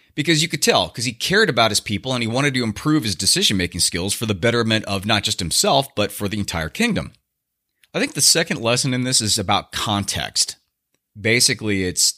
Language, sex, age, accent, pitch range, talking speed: English, male, 30-49, American, 100-125 Hz, 205 wpm